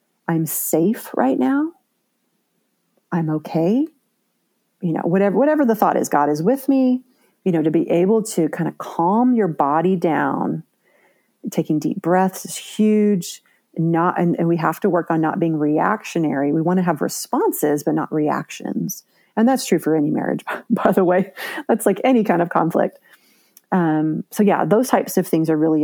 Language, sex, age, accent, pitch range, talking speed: English, female, 40-59, American, 165-225 Hz, 180 wpm